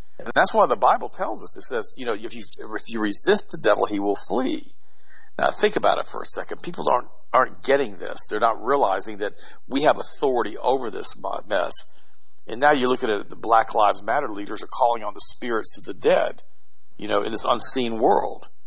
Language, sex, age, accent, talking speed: English, male, 50-69, American, 220 wpm